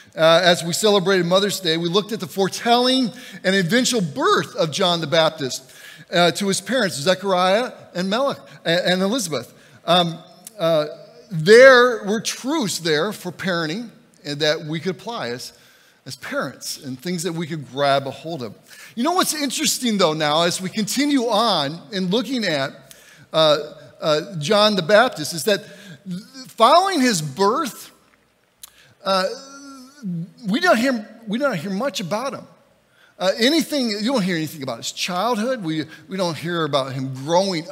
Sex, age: male, 50-69